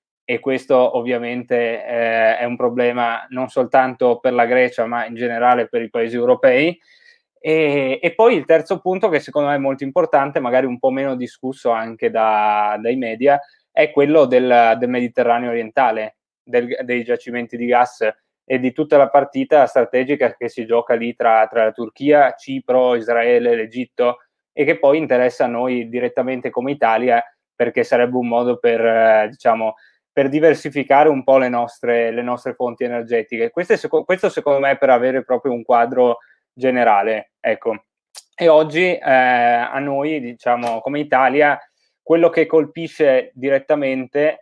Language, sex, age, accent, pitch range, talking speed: Italian, male, 20-39, native, 120-140 Hz, 160 wpm